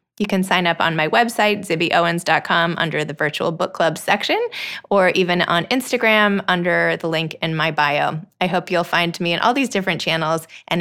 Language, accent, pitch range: English, American, 170-215 Hz